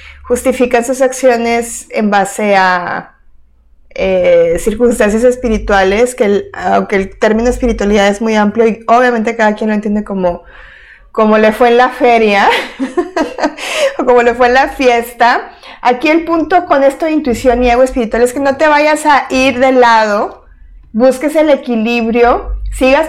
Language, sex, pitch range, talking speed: Spanish, female, 225-275 Hz, 160 wpm